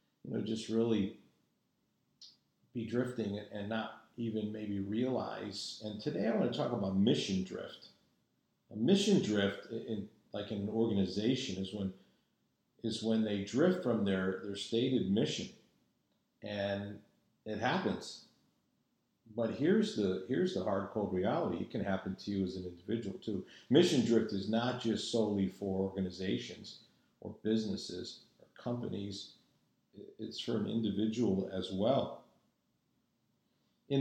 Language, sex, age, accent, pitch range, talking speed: English, male, 50-69, American, 100-115 Hz, 140 wpm